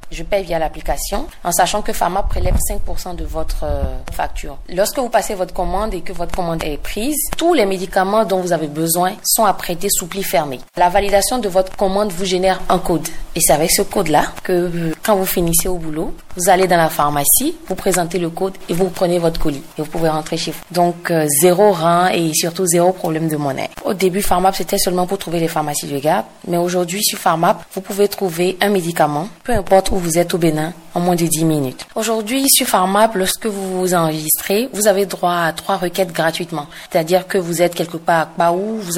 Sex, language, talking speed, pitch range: female, French, 215 wpm, 170-195 Hz